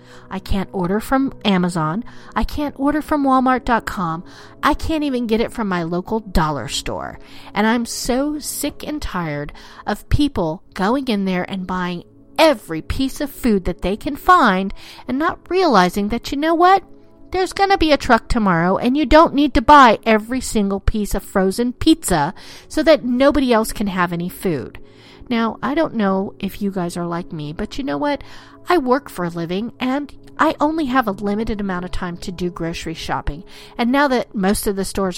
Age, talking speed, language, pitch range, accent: 40-59, 195 wpm, English, 180-275 Hz, American